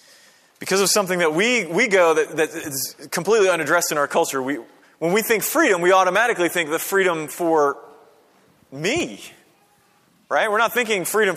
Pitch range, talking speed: 135-195 Hz, 170 wpm